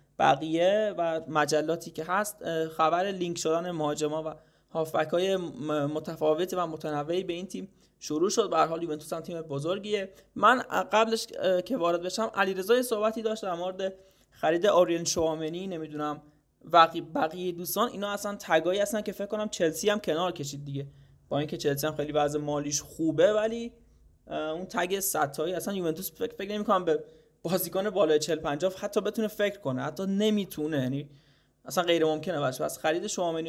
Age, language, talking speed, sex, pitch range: 20-39, Persian, 165 wpm, male, 155-195 Hz